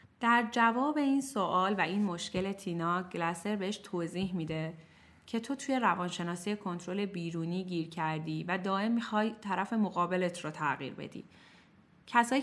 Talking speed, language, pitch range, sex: 140 wpm, Persian, 170-230 Hz, female